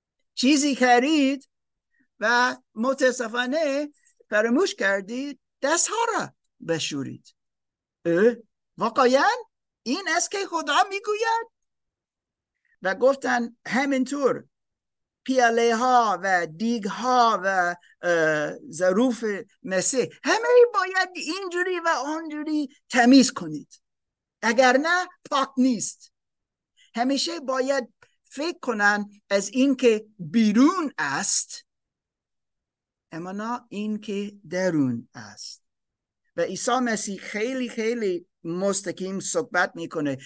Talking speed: 85 wpm